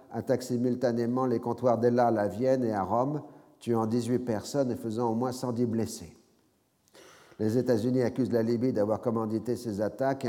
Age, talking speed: 50-69, 170 wpm